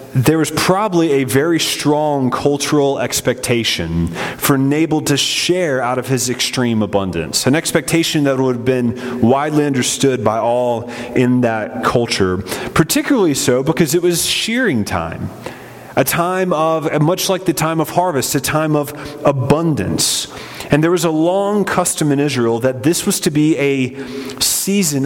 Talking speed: 155 wpm